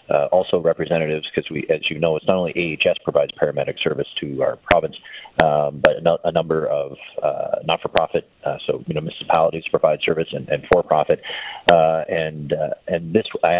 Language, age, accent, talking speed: English, 40-59, American, 185 wpm